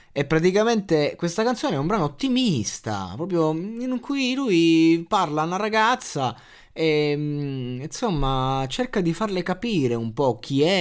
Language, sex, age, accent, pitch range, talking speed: Italian, male, 20-39, native, 125-185 Hz, 145 wpm